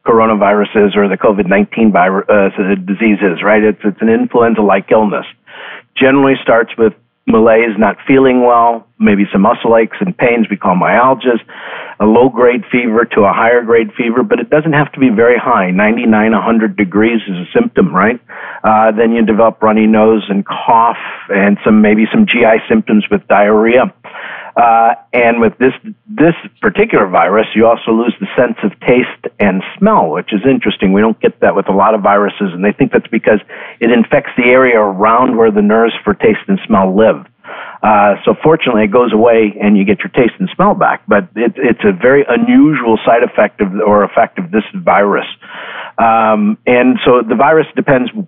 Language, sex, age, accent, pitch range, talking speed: English, male, 50-69, American, 105-125 Hz, 185 wpm